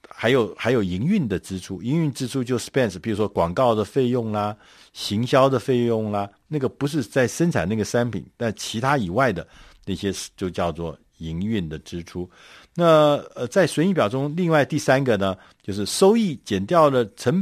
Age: 50-69